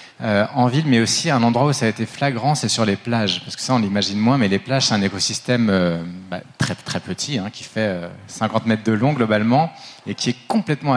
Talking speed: 250 wpm